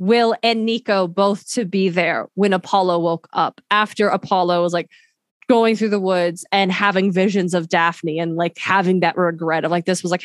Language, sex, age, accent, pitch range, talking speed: English, female, 20-39, American, 180-215 Hz, 200 wpm